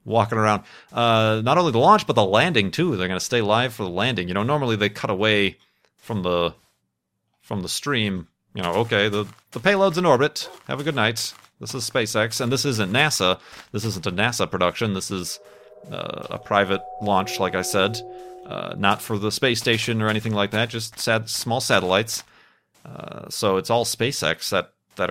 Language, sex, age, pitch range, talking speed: English, male, 30-49, 100-120 Hz, 200 wpm